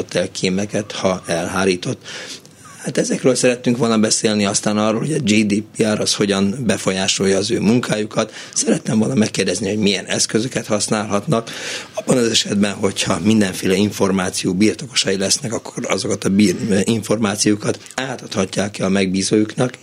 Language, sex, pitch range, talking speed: Hungarian, male, 100-125 Hz, 135 wpm